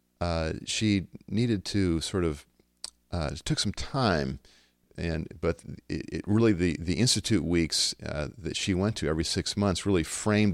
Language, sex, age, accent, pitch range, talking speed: English, male, 40-59, American, 80-100 Hz, 165 wpm